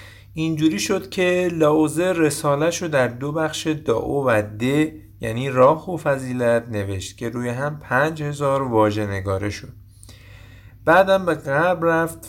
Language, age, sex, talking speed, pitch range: Persian, 50-69, male, 135 wpm, 105-155 Hz